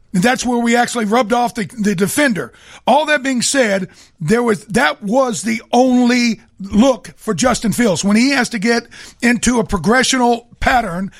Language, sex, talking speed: English, male, 170 wpm